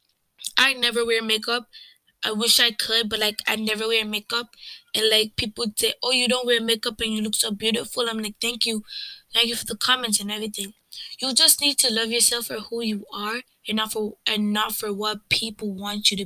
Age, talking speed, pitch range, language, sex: 10-29, 220 wpm, 220-240 Hz, English, female